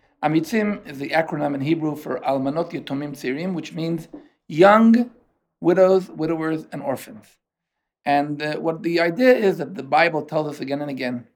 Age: 50-69